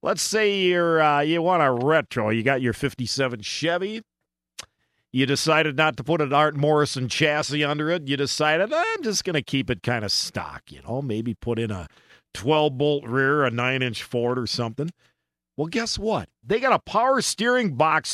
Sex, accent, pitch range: male, American, 125-180 Hz